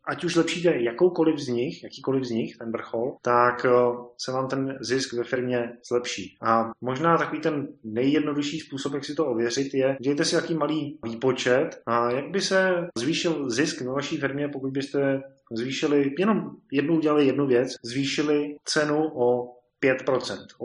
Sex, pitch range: male, 120-145 Hz